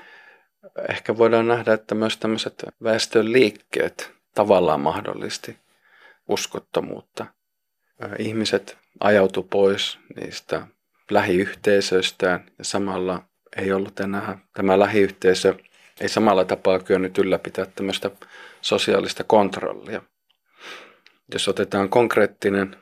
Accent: native